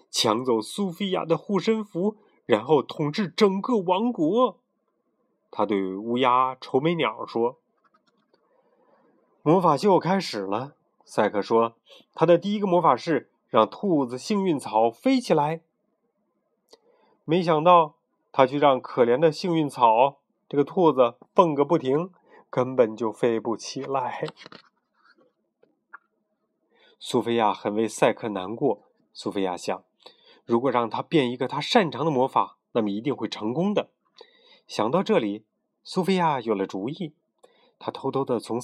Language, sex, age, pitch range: Chinese, male, 30-49, 125-205 Hz